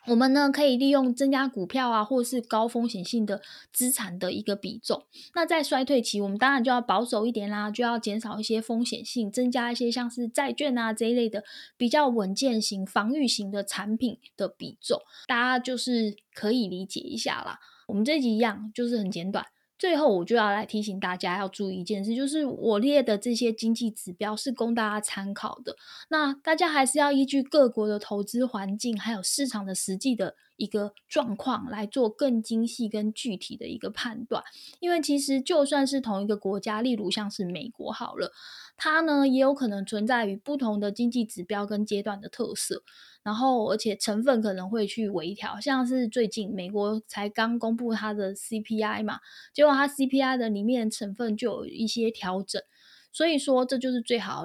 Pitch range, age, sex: 210-260 Hz, 10-29, female